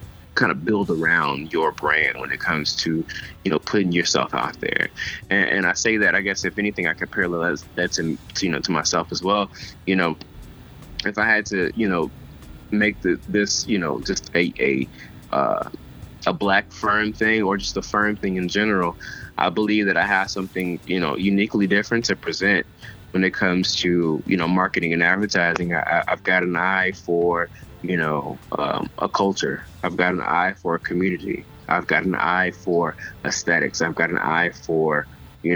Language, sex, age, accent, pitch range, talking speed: English, male, 20-39, American, 85-100 Hz, 195 wpm